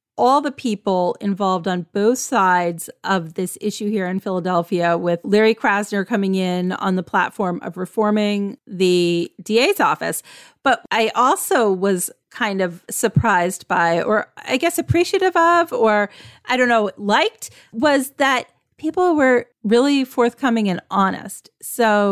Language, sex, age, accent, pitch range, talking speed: English, female, 40-59, American, 195-235 Hz, 145 wpm